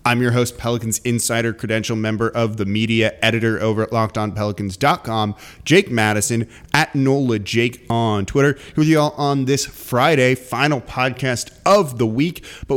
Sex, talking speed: male, 155 wpm